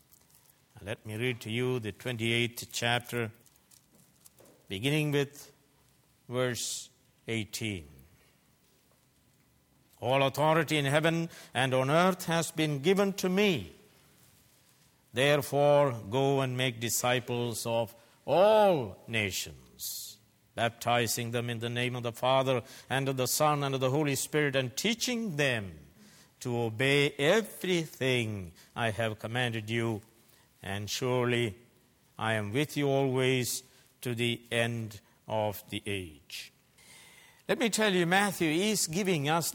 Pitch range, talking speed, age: 115-140 Hz, 120 wpm, 60-79